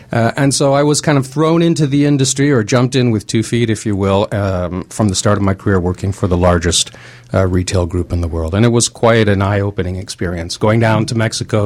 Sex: male